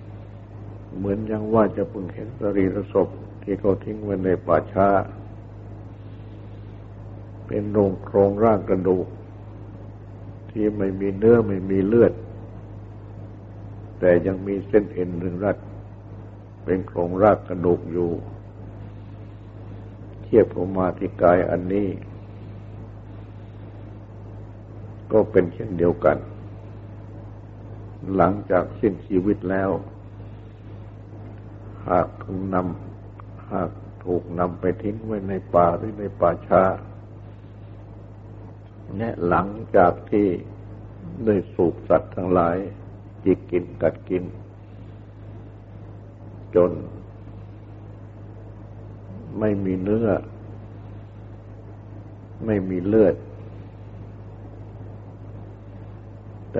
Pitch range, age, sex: 100-105 Hz, 60-79, male